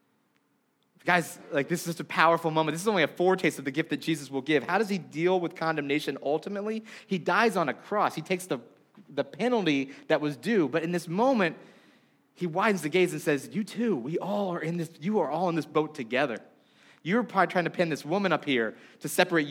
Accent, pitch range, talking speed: American, 155-190 Hz, 230 wpm